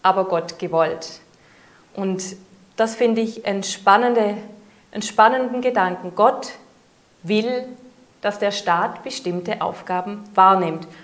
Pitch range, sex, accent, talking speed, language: 190-245 Hz, female, German, 110 wpm, German